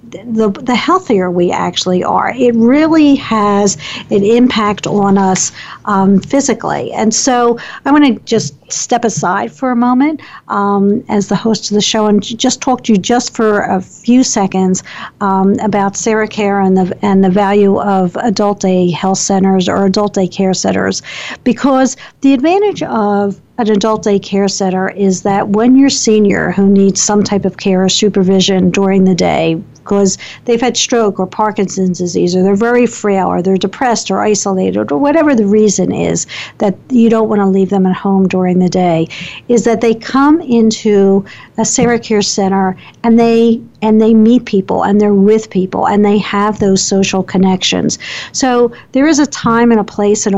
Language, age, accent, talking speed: English, 50-69, American, 185 wpm